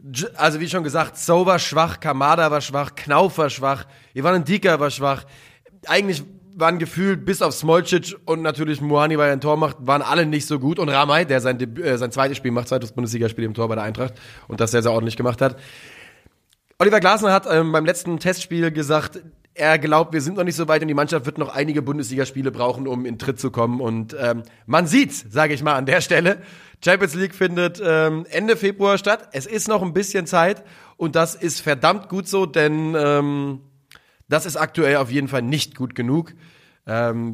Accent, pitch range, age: German, 135-175 Hz, 30-49